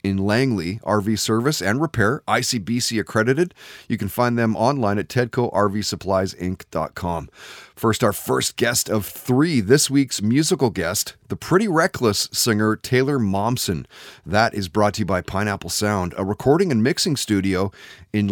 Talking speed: 145 wpm